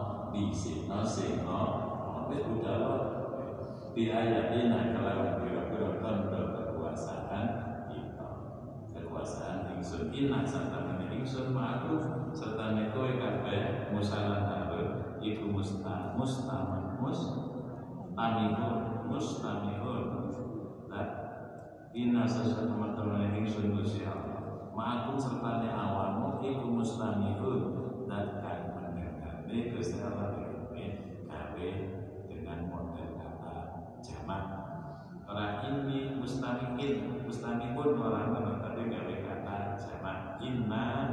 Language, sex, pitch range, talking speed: Indonesian, male, 95-120 Hz, 65 wpm